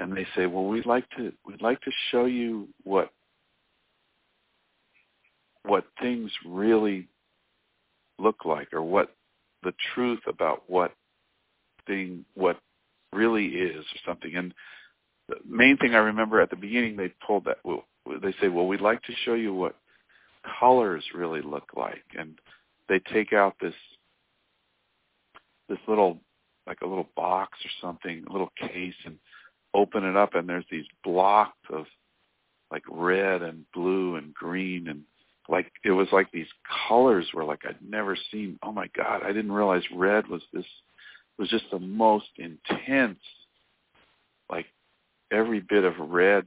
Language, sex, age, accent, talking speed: English, male, 50-69, American, 150 wpm